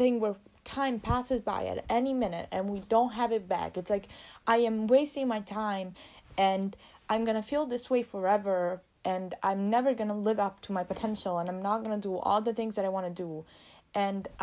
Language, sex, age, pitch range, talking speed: English, female, 20-39, 180-215 Hz, 210 wpm